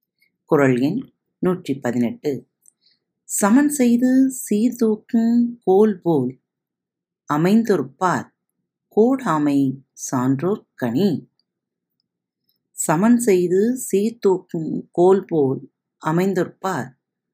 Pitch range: 135-215 Hz